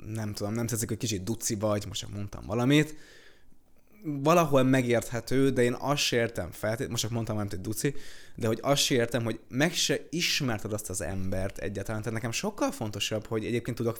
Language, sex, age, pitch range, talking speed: Hungarian, male, 20-39, 110-140 Hz, 180 wpm